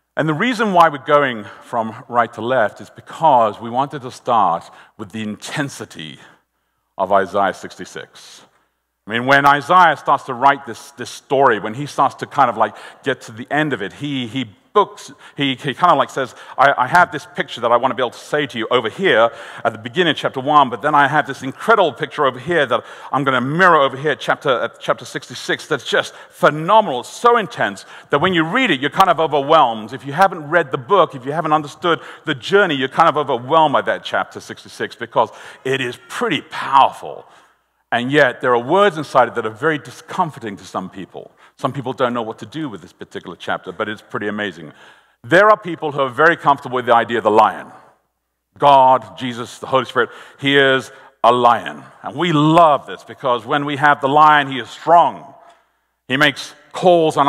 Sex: male